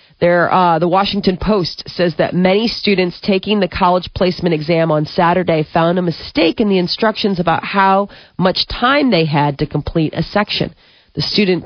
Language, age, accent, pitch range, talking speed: English, 40-59, American, 165-200 Hz, 170 wpm